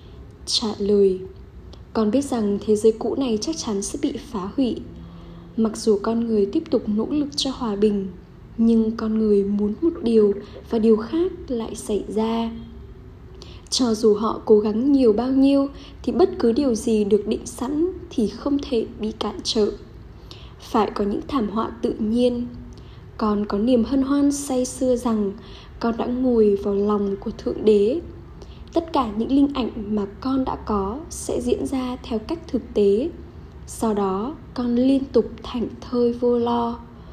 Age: 10-29